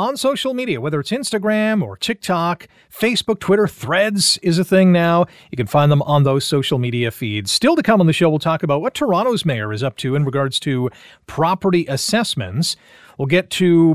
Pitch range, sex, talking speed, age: 140-180 Hz, male, 200 wpm, 30-49